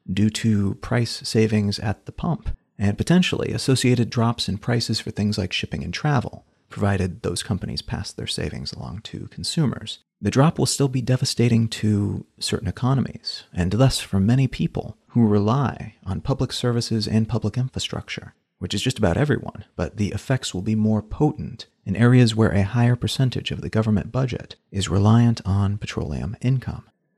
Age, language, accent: 40-59, English, American